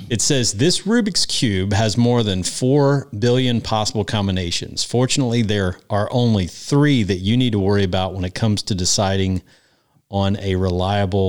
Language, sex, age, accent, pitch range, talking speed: English, male, 40-59, American, 95-120 Hz, 165 wpm